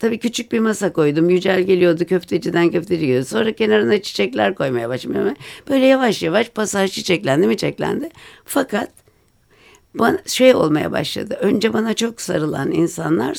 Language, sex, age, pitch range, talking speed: Turkish, female, 60-79, 145-210 Hz, 145 wpm